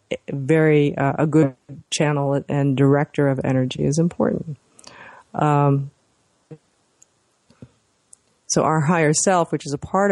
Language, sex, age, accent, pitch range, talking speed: English, female, 40-59, American, 135-155 Hz, 120 wpm